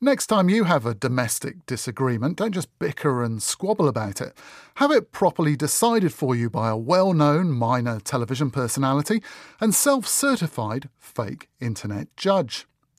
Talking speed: 145 wpm